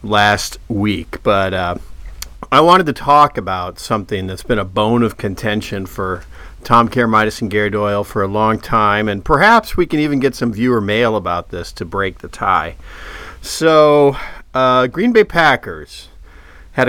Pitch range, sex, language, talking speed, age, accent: 85-125 Hz, male, English, 165 wpm, 40-59, American